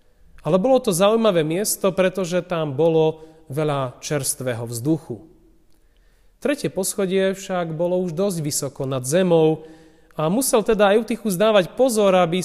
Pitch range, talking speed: 130-180 Hz, 130 wpm